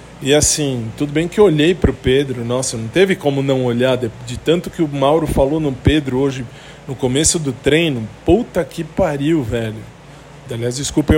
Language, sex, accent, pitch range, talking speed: Portuguese, male, Brazilian, 125-155 Hz, 190 wpm